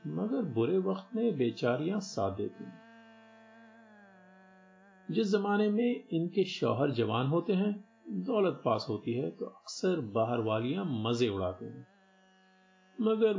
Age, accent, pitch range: 50-69, native, 125-190 Hz